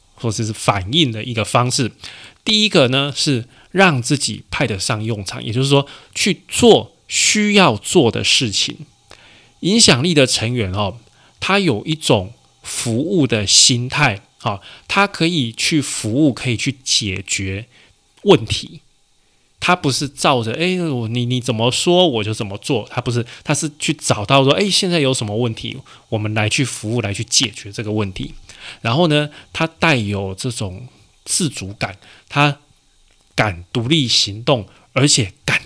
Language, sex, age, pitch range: Chinese, male, 20-39, 110-150 Hz